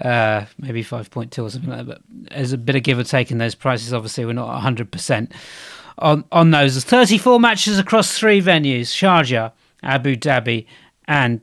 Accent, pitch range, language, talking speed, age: British, 130-170 Hz, English, 185 wpm, 40-59